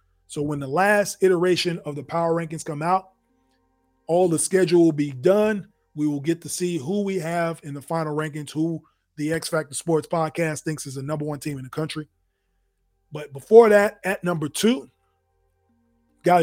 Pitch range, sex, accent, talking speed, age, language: 145-180 Hz, male, American, 185 wpm, 20-39, English